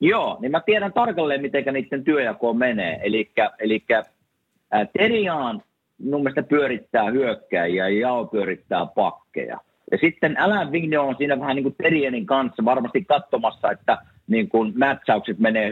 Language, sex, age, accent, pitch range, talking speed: Finnish, male, 50-69, native, 115-160 Hz, 145 wpm